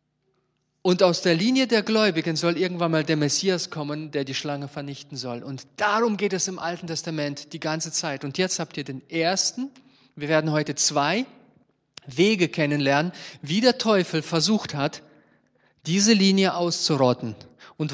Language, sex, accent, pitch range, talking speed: German, male, German, 145-205 Hz, 160 wpm